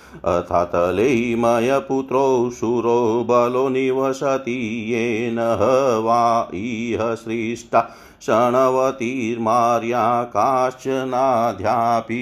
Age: 50-69